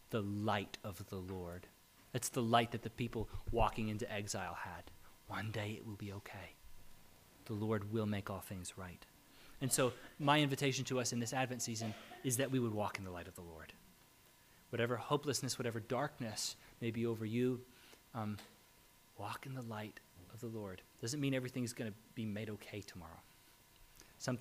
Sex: male